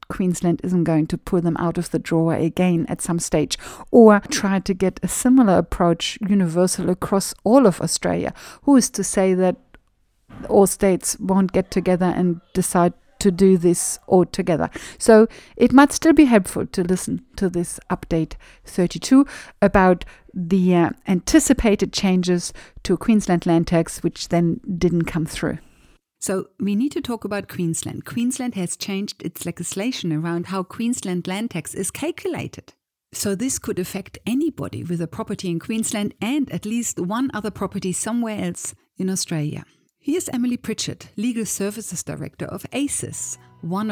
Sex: female